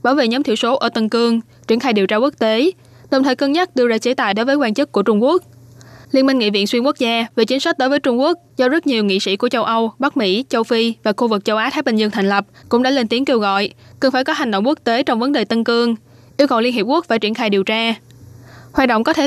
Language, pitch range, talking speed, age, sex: Vietnamese, 210-255 Hz, 300 wpm, 10-29, female